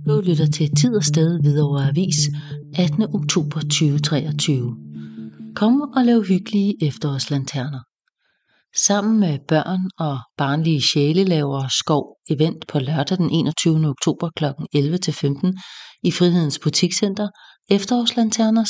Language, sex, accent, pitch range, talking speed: English, female, Danish, 145-185 Hz, 120 wpm